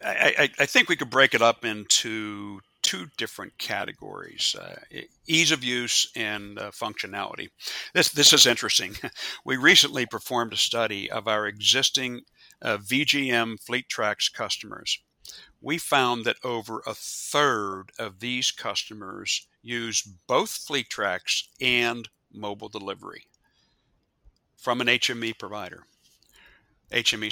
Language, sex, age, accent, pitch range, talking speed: English, male, 60-79, American, 105-130 Hz, 125 wpm